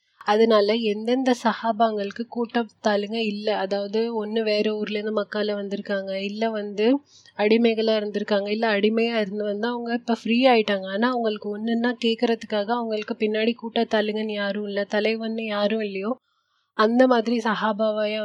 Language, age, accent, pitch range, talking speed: Tamil, 20-39, native, 210-230 Hz, 125 wpm